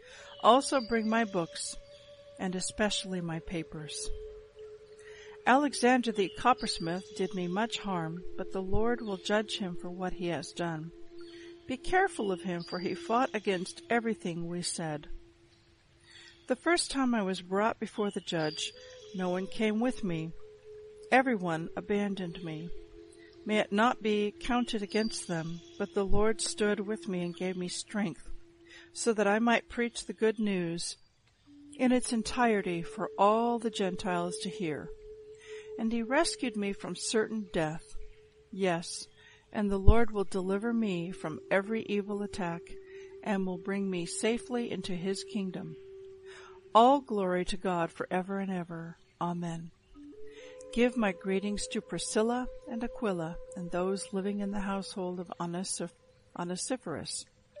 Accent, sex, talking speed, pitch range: American, female, 145 wpm, 180-250 Hz